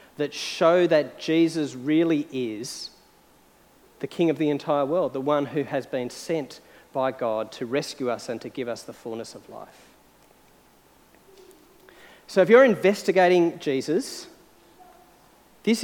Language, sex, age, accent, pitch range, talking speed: English, male, 40-59, Australian, 135-180 Hz, 140 wpm